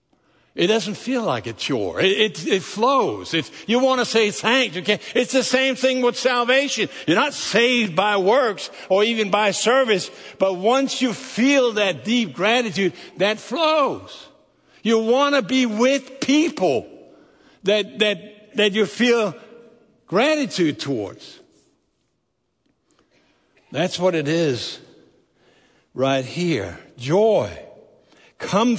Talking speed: 130 wpm